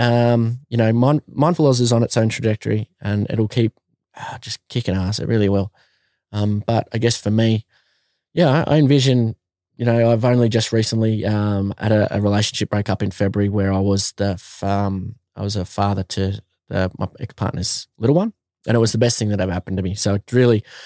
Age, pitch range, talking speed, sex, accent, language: 20-39, 105-125 Hz, 215 wpm, male, Australian, English